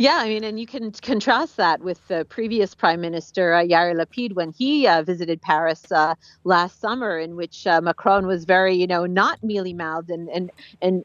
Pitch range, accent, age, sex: 185-240 Hz, American, 40-59, female